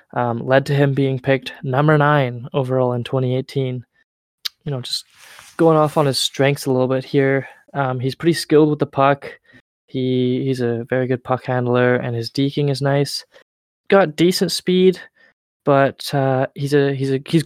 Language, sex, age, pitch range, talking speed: English, male, 20-39, 125-145 Hz, 180 wpm